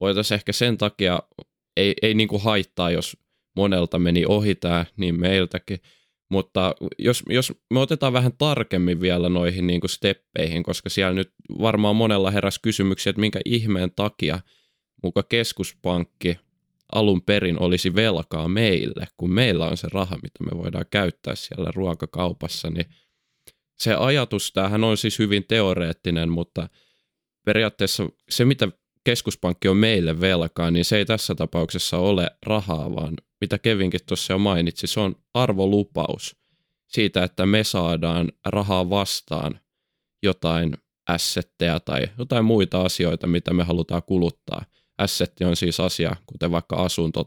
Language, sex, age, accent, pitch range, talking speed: Finnish, male, 20-39, native, 90-105 Hz, 135 wpm